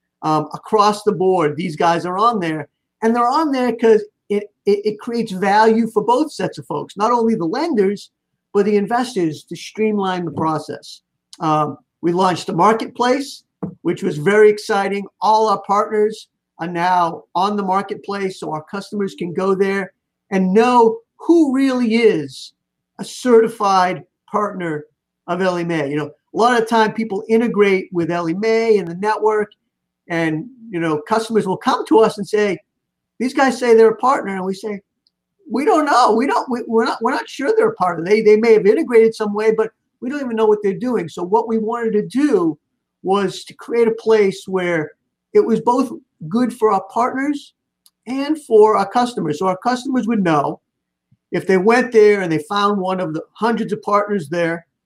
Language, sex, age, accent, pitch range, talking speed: English, male, 50-69, American, 180-225 Hz, 190 wpm